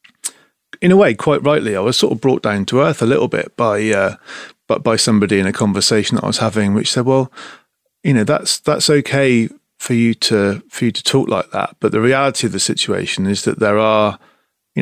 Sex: male